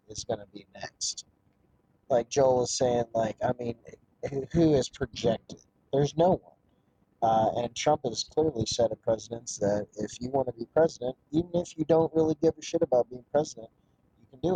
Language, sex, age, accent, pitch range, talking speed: English, male, 30-49, American, 115-150 Hz, 200 wpm